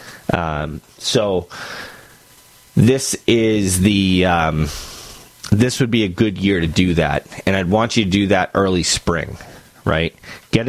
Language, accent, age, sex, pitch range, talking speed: English, American, 30-49, male, 90-110 Hz, 145 wpm